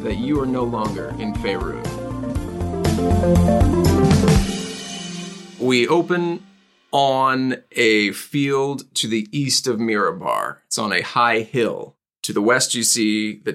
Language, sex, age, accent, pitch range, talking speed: English, male, 30-49, American, 105-145 Hz, 125 wpm